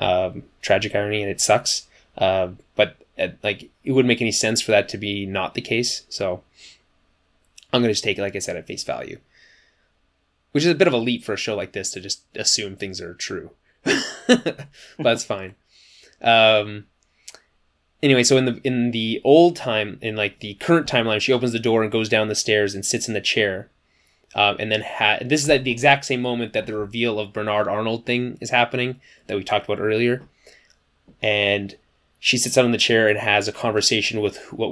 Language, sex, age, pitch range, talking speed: English, male, 20-39, 100-125 Hz, 210 wpm